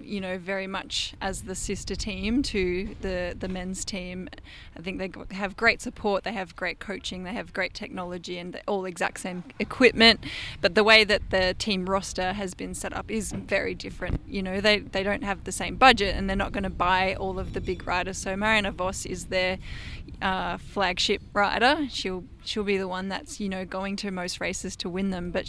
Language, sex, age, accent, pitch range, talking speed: English, female, 10-29, Australian, 185-210 Hz, 210 wpm